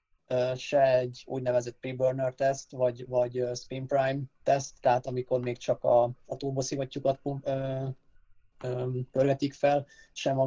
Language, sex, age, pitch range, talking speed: Hungarian, male, 20-39, 125-135 Hz, 105 wpm